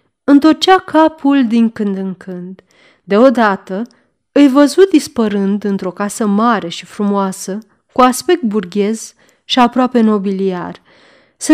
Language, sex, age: Romanian, female, 30-49